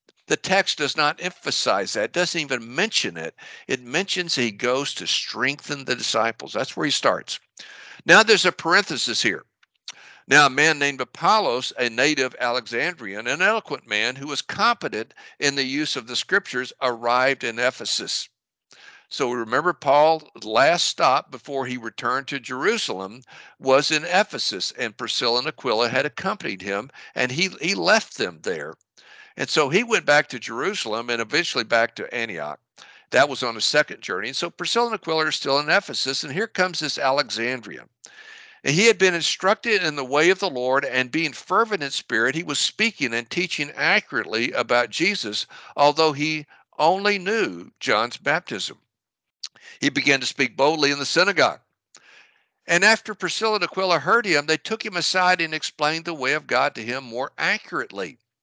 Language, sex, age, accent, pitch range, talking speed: English, male, 60-79, American, 135-180 Hz, 170 wpm